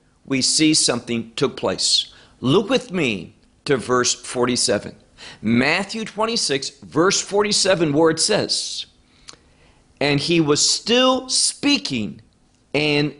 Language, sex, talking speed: English, male, 110 wpm